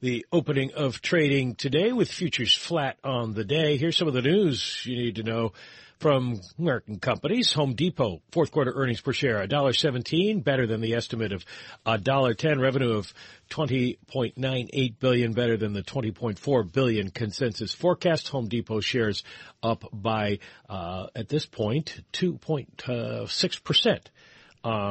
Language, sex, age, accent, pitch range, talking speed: English, male, 50-69, American, 110-150 Hz, 135 wpm